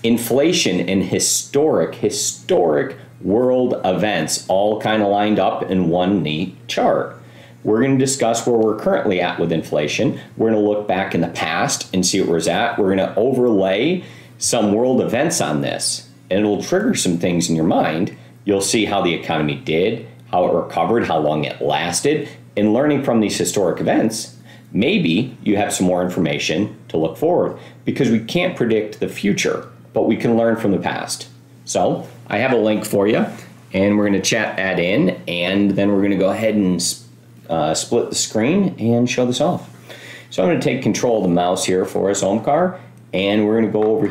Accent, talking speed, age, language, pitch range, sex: American, 190 wpm, 40-59, English, 85-110 Hz, male